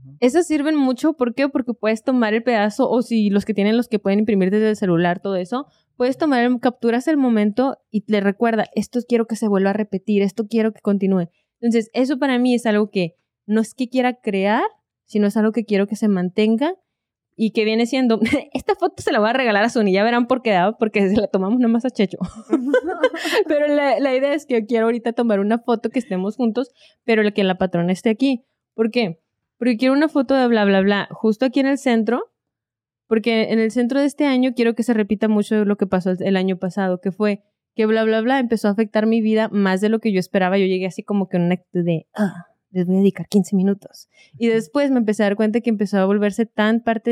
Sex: female